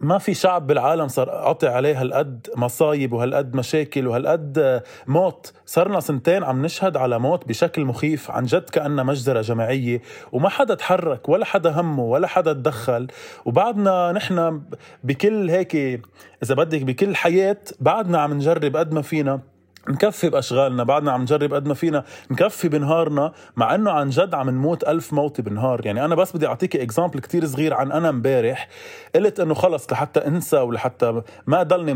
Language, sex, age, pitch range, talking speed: Arabic, male, 30-49, 125-170 Hz, 165 wpm